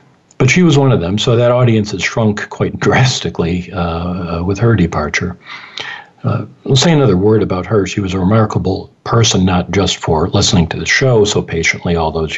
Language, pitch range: English, 90-110 Hz